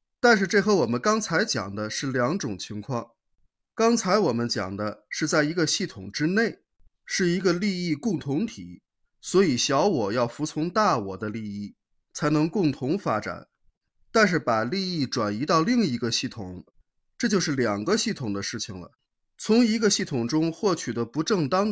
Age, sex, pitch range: 20-39, male, 110-185 Hz